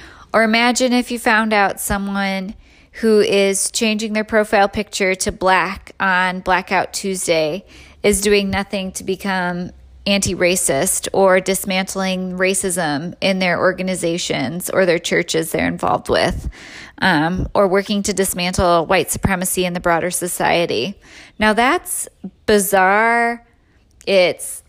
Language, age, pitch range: English, 20-39, 185-220 Hz